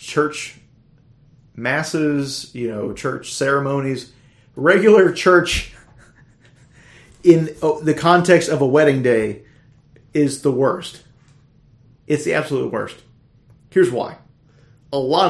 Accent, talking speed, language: American, 100 wpm, English